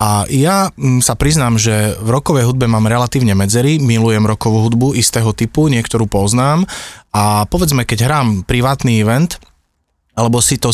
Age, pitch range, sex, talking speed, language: 30-49, 110-130 Hz, male, 150 wpm, Slovak